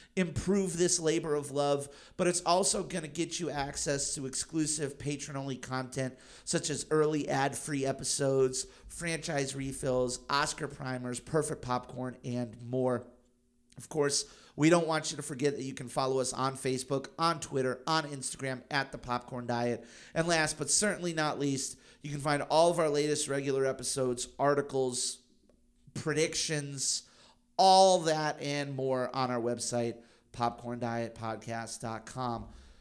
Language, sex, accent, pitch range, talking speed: English, male, American, 120-155 Hz, 145 wpm